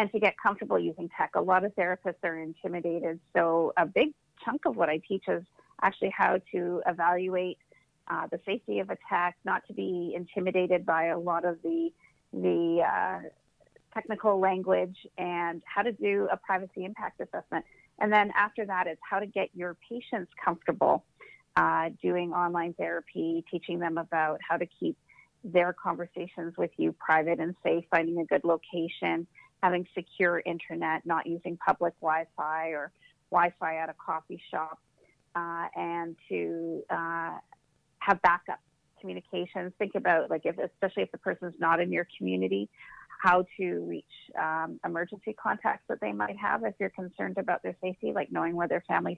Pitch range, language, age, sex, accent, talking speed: 165-195 Hz, English, 40-59, female, American, 170 wpm